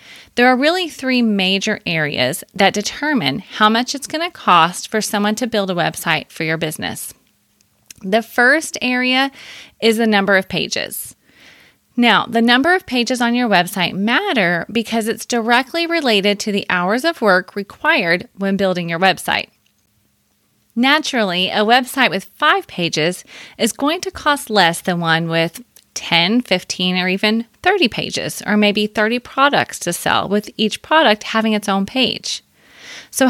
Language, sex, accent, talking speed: English, female, American, 160 wpm